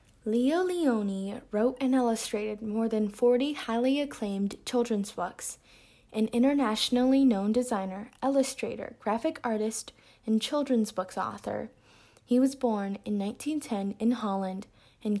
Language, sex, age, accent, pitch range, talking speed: English, female, 10-29, American, 205-260 Hz, 120 wpm